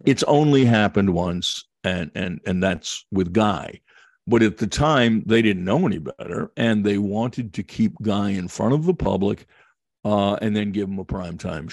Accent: American